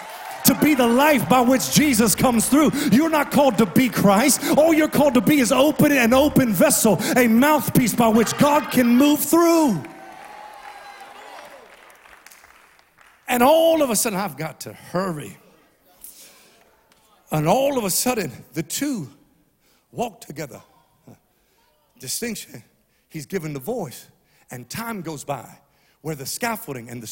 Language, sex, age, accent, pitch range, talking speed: English, male, 50-69, American, 140-240 Hz, 145 wpm